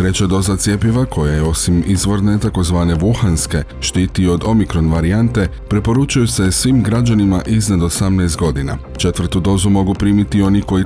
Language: Croatian